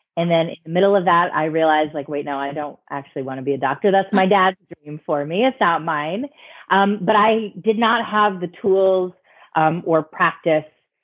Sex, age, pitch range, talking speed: female, 30-49, 150-195 Hz, 215 wpm